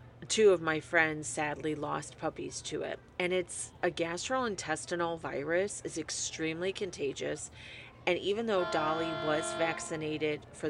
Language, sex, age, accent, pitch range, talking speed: English, female, 30-49, American, 150-175 Hz, 135 wpm